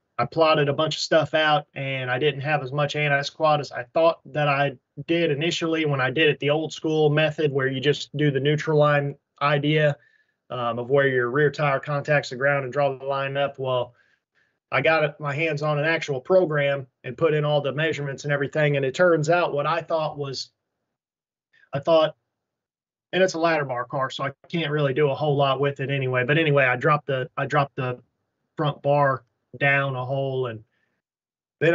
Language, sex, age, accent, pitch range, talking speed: English, male, 20-39, American, 140-165 Hz, 210 wpm